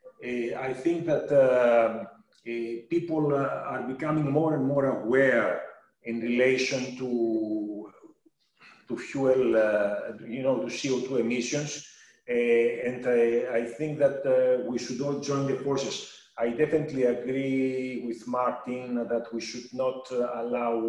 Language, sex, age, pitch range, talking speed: English, male, 40-59, 115-140 Hz, 140 wpm